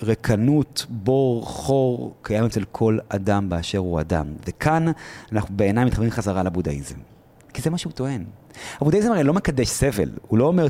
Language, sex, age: Hebrew, male, 30-49